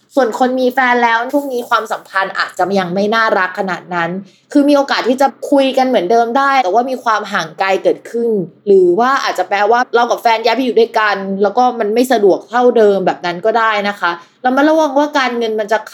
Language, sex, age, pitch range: Thai, female, 20-39, 185-245 Hz